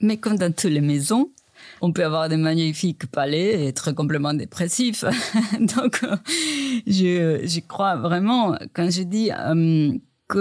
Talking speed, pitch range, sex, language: 150 wpm, 165-205 Hz, female, French